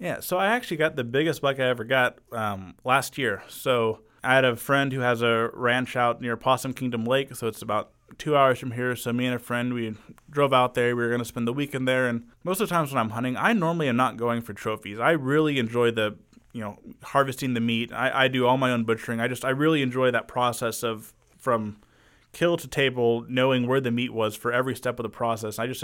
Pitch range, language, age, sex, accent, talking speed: 115-135 Hz, English, 20-39, male, American, 250 wpm